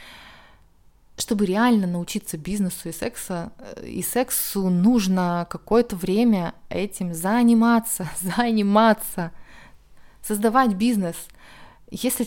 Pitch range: 175-220 Hz